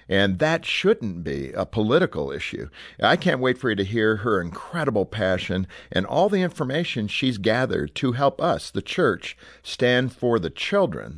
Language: English